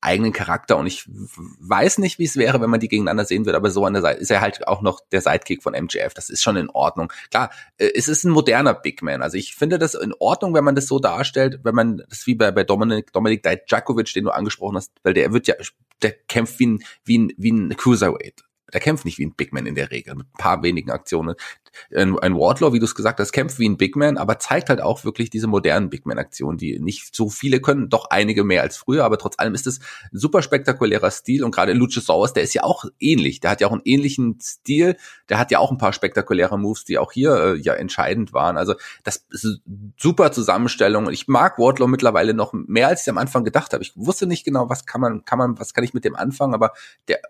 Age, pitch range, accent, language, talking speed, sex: 30-49, 110-145 Hz, German, German, 250 wpm, male